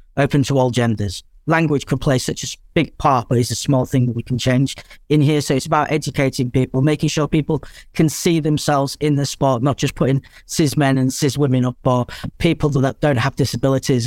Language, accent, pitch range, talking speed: English, British, 130-150 Hz, 220 wpm